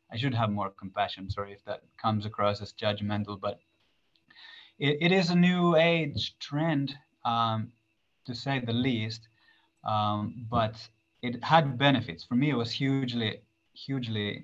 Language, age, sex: English, 20-39, male